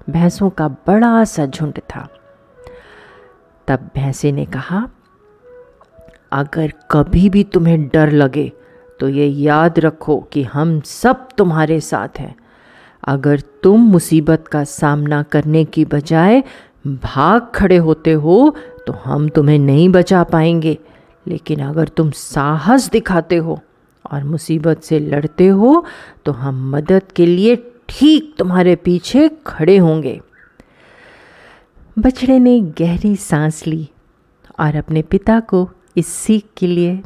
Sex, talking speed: female, 125 wpm